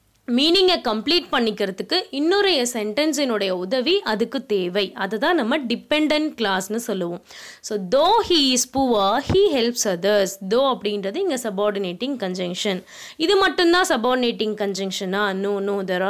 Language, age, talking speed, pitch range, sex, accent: Tamil, 20-39, 125 wpm, 205-285 Hz, female, native